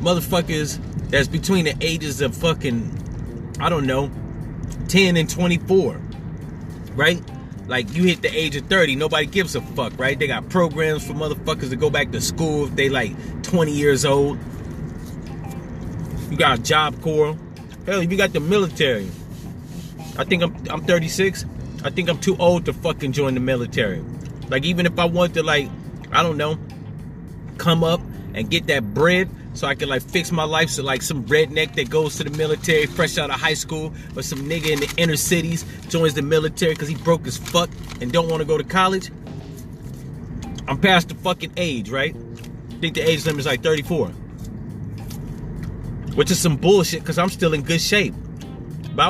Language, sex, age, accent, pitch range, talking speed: English, male, 30-49, American, 140-170 Hz, 185 wpm